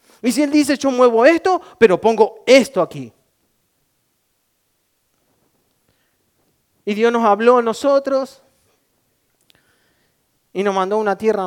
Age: 30-49